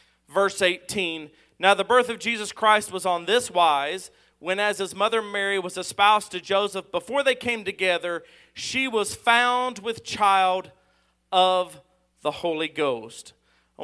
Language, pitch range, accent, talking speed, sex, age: English, 185-220 Hz, American, 150 wpm, male, 40-59